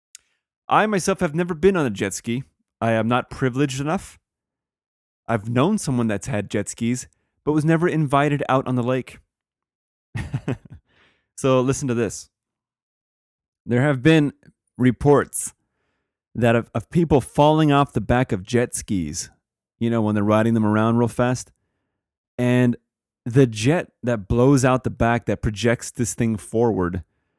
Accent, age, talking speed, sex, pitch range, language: American, 30-49, 155 wpm, male, 105-135 Hz, English